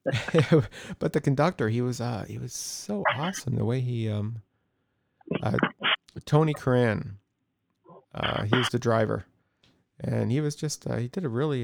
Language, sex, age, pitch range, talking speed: English, male, 30-49, 105-140 Hz, 160 wpm